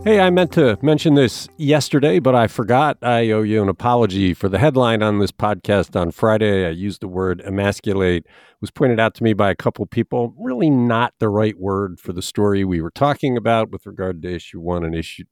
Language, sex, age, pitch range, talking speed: English, male, 50-69, 100-160 Hz, 225 wpm